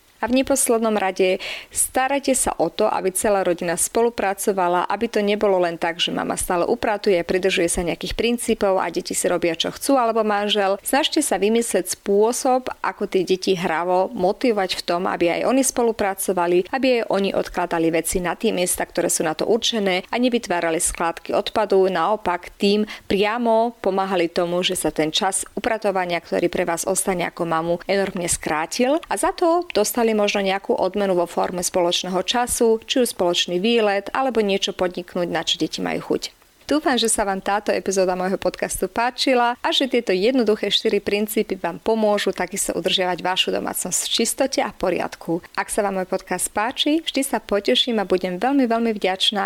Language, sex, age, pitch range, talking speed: Slovak, female, 30-49, 180-225 Hz, 180 wpm